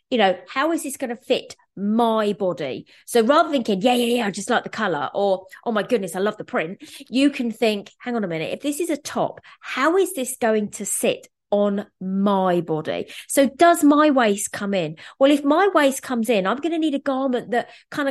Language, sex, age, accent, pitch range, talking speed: English, female, 30-49, British, 200-275 Hz, 235 wpm